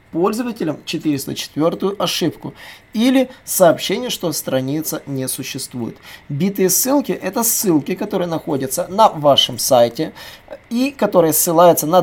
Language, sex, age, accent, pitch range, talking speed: Russian, male, 20-39, native, 150-220 Hz, 110 wpm